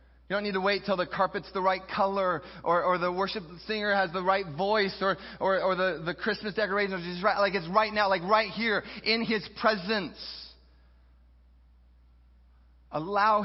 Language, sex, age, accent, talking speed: English, male, 30-49, American, 185 wpm